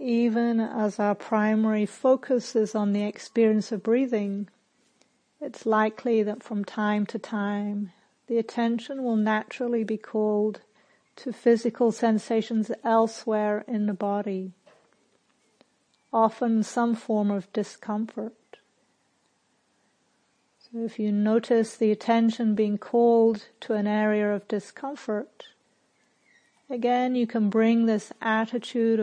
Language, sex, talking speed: English, female, 115 wpm